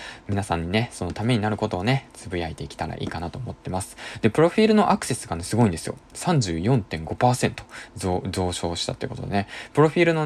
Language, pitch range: Japanese, 100-145 Hz